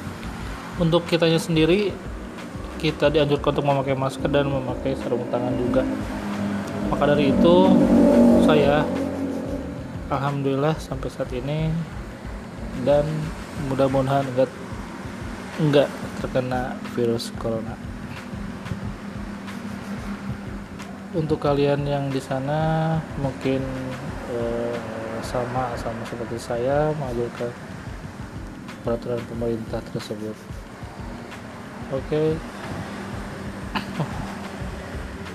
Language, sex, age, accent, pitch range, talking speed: Indonesian, male, 20-39, native, 120-160 Hz, 75 wpm